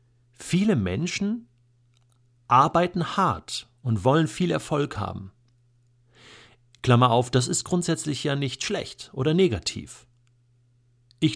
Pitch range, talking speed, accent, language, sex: 115-125 Hz, 105 wpm, German, German, male